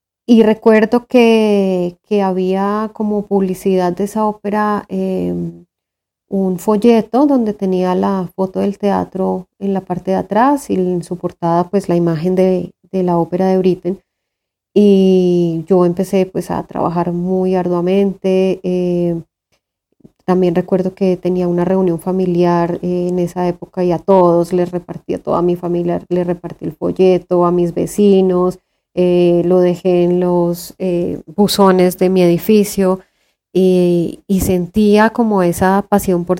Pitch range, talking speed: 175-195 Hz, 150 wpm